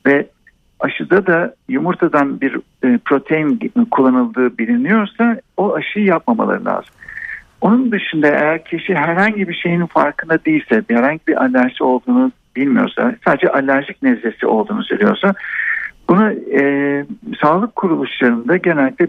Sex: male